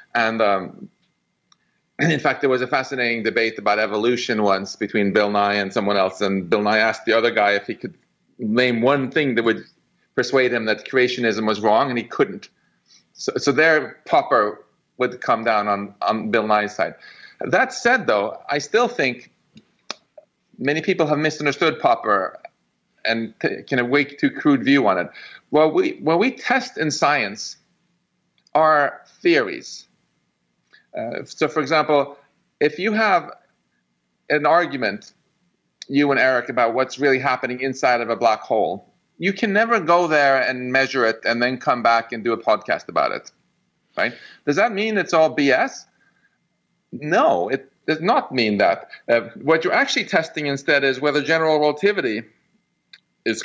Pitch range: 115-160 Hz